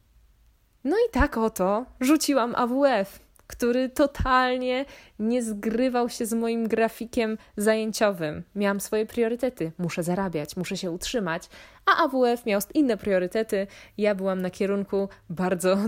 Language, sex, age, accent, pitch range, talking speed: Polish, female, 20-39, native, 165-210 Hz, 125 wpm